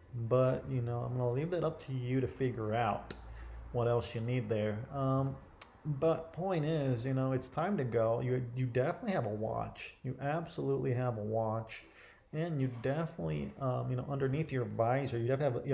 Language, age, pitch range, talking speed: English, 30-49, 110-135 Hz, 200 wpm